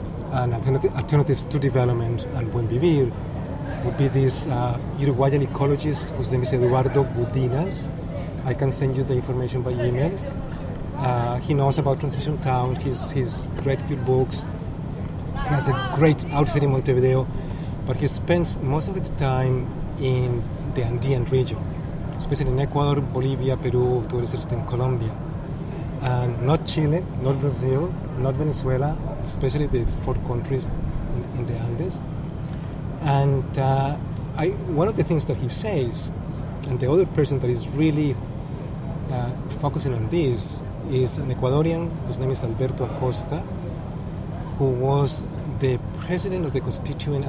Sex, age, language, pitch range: male, 30-49, English, 125-145 Hz